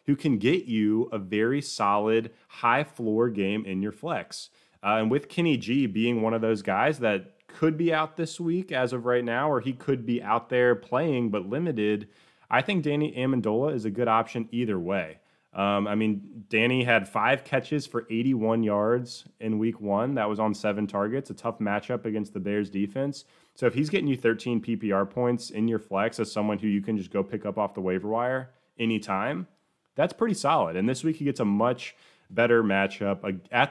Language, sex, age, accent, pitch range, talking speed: English, male, 20-39, American, 105-125 Hz, 205 wpm